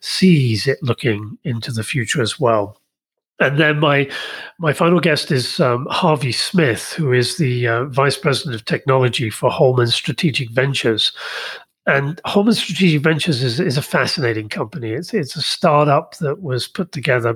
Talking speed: 160 wpm